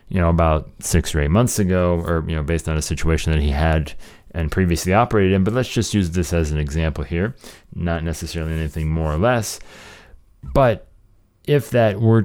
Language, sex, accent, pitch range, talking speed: English, male, American, 80-100 Hz, 200 wpm